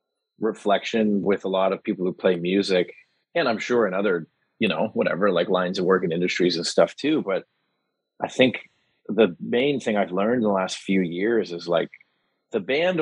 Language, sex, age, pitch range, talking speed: English, male, 30-49, 95-110 Hz, 200 wpm